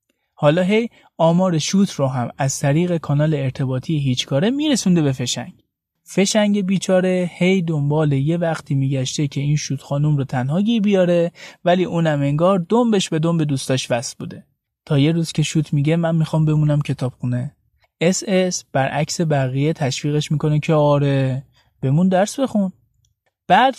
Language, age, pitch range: Persian, 30-49, 140-185 Hz